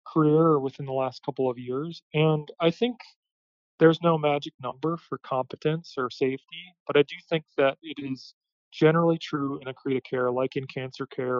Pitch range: 130-155 Hz